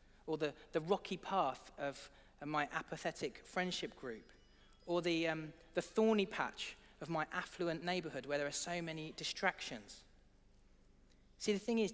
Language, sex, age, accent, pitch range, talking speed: English, male, 40-59, British, 145-180 Hz, 145 wpm